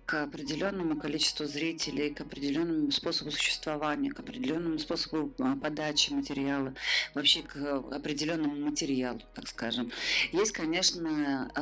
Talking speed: 110 wpm